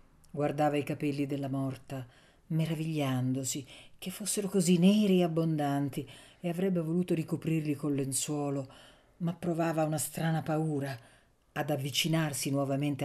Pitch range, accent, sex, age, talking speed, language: 145-190 Hz, native, female, 50-69, 120 wpm, Italian